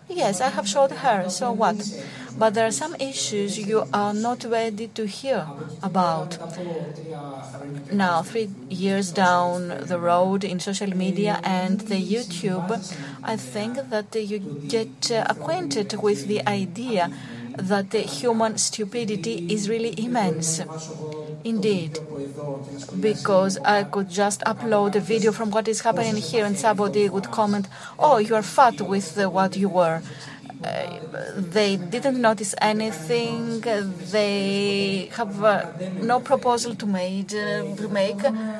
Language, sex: Greek, female